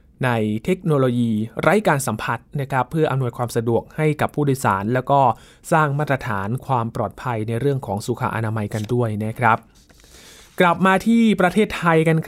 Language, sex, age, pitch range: Thai, male, 20-39, 125-165 Hz